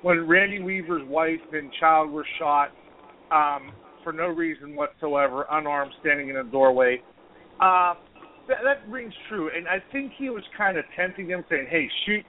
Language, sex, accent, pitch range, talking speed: English, male, American, 155-200 Hz, 170 wpm